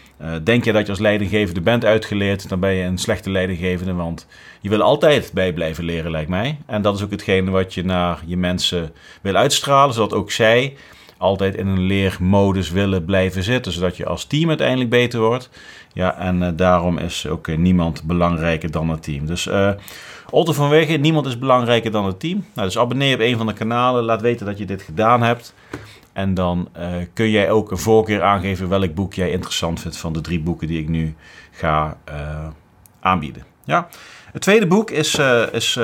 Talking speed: 205 wpm